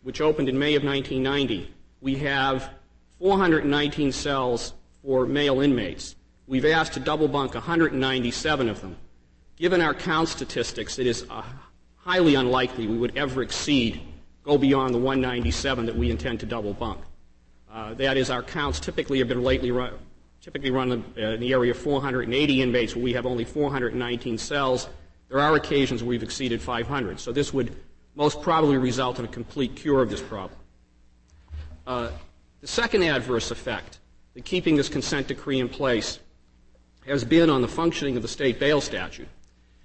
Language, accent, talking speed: English, American, 165 wpm